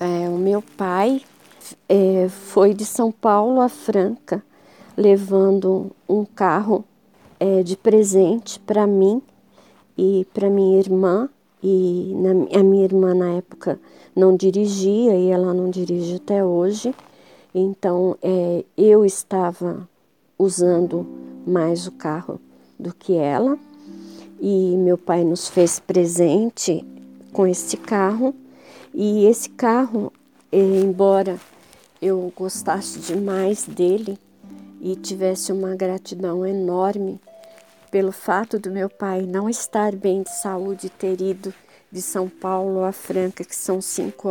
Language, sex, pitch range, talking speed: Portuguese, female, 185-205 Hz, 115 wpm